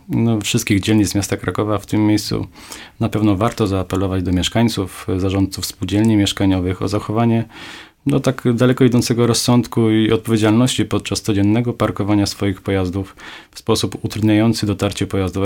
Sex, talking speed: male, 140 wpm